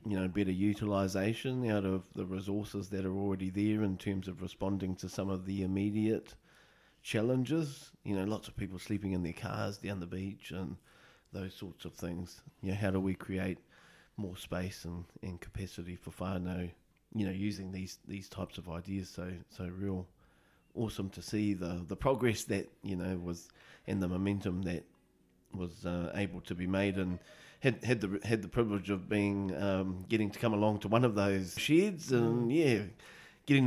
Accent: Australian